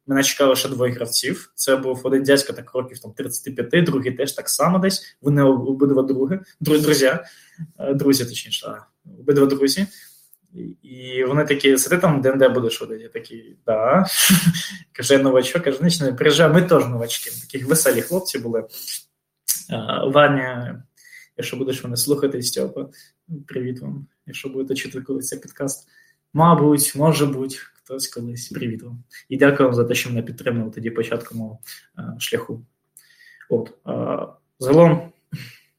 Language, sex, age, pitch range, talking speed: Ukrainian, male, 20-39, 130-170 Hz, 145 wpm